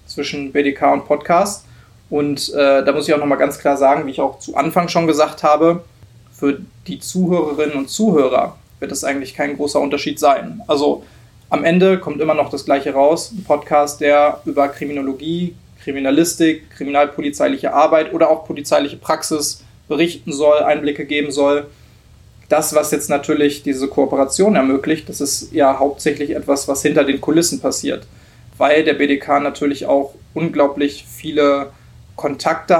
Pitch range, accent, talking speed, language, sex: 140-155 Hz, German, 155 wpm, German, male